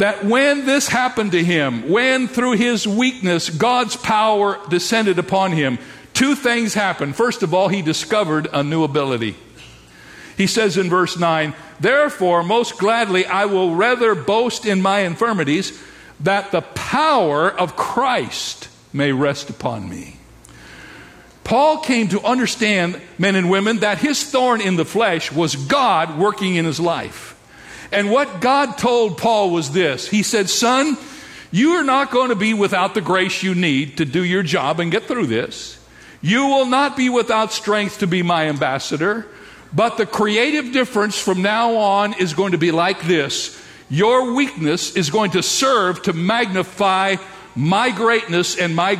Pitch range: 170-230 Hz